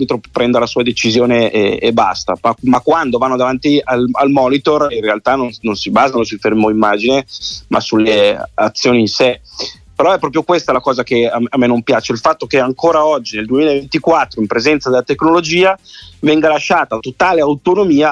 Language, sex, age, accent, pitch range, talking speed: Italian, male, 30-49, native, 120-145 Hz, 180 wpm